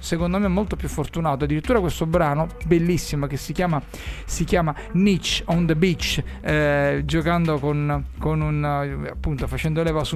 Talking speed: 160 wpm